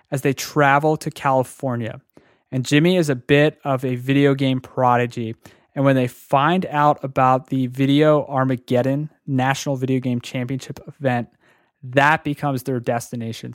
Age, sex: 20-39, male